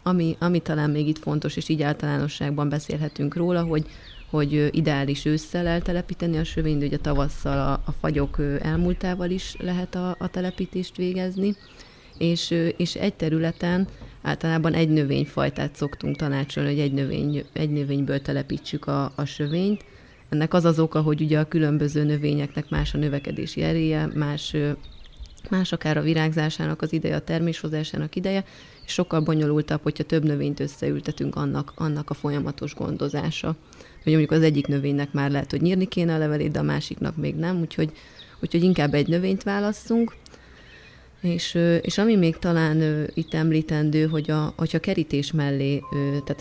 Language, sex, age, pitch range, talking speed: Hungarian, female, 30-49, 145-165 Hz, 155 wpm